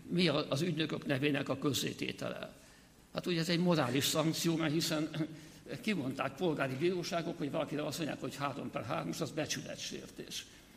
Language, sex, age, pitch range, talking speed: Hungarian, male, 60-79, 145-170 Hz, 155 wpm